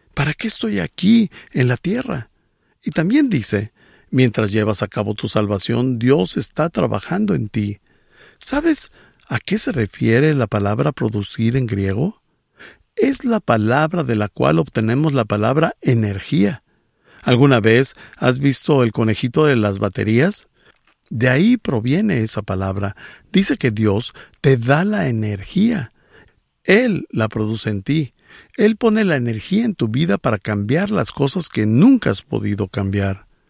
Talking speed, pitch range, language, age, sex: 150 wpm, 105-160 Hz, English, 50-69, male